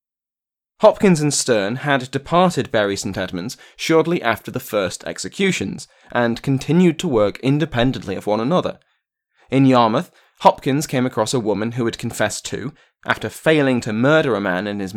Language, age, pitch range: English, 20-39, 105-145 Hz